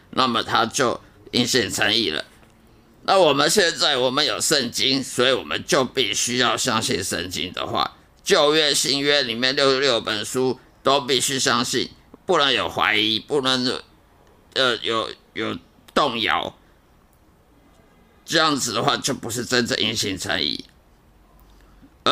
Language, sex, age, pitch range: Chinese, male, 50-69, 120-150 Hz